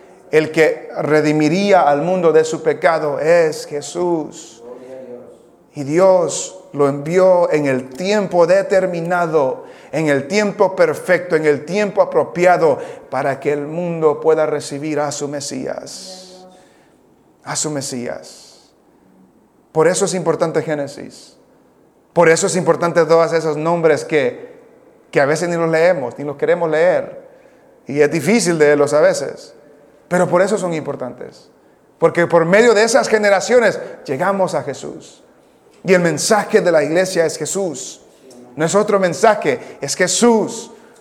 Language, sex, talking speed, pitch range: English, male, 140 wpm, 150-195 Hz